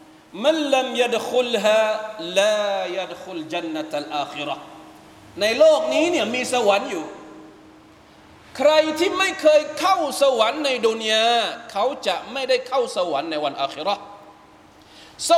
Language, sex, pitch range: Thai, male, 215-290 Hz